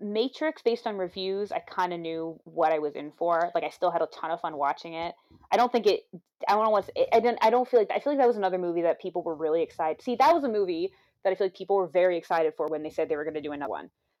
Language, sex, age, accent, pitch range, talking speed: English, female, 20-39, American, 160-230 Hz, 305 wpm